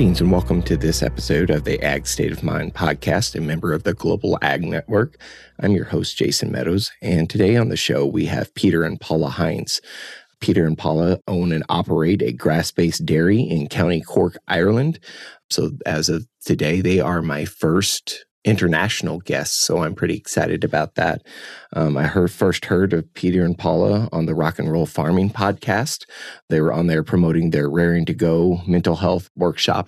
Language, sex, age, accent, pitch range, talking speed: English, male, 30-49, American, 85-95 Hz, 185 wpm